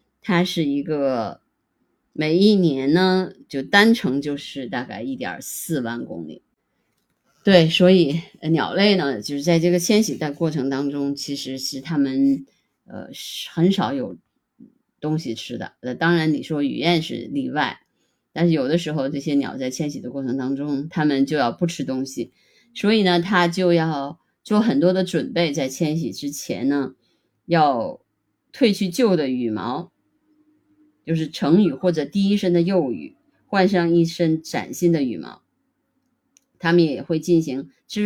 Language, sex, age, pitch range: Chinese, female, 20-39, 140-200 Hz